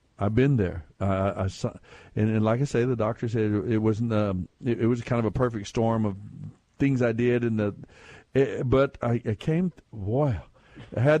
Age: 60-79